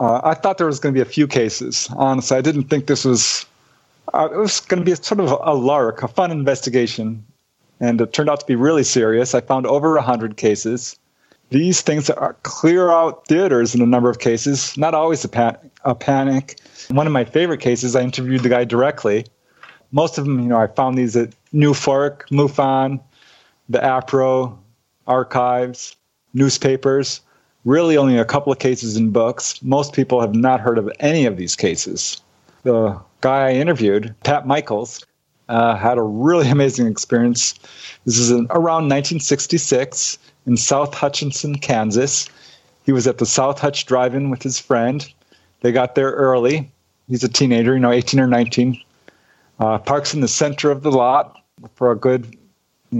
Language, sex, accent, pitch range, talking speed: English, male, American, 120-145 Hz, 180 wpm